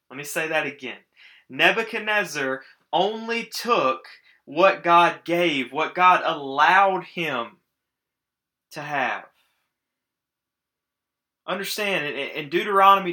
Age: 20-39